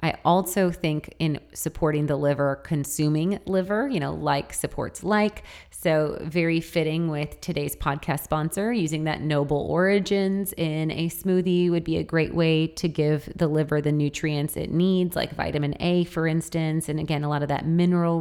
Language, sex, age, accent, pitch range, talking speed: English, female, 30-49, American, 150-175 Hz, 175 wpm